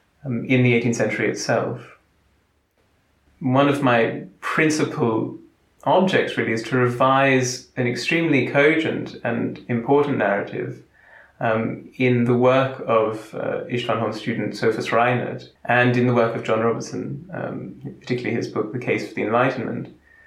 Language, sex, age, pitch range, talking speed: English, male, 30-49, 115-135 Hz, 140 wpm